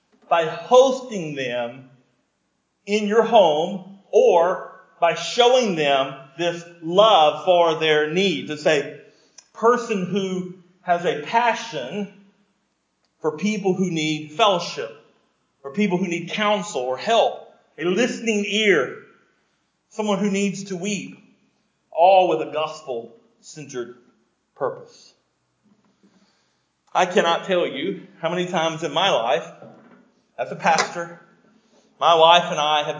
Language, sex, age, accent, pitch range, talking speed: English, male, 40-59, American, 150-210 Hz, 120 wpm